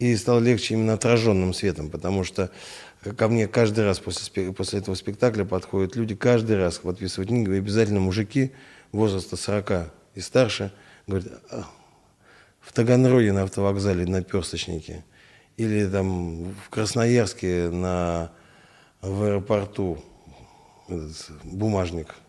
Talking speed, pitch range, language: 115 wpm, 95-115 Hz, Russian